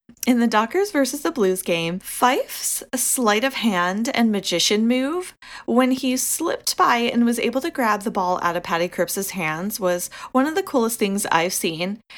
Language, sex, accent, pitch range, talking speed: English, female, American, 195-265 Hz, 185 wpm